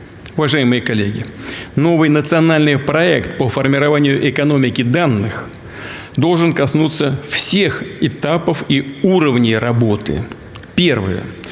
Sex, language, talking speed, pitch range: male, Russian, 90 wpm, 125-150 Hz